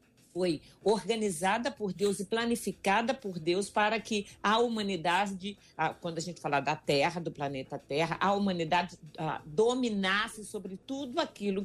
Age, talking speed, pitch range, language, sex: 50-69, 140 wpm, 170-225 Hz, Portuguese, female